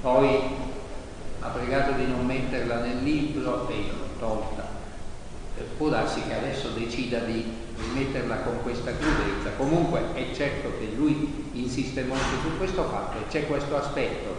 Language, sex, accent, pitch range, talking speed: Italian, male, native, 110-135 Hz, 150 wpm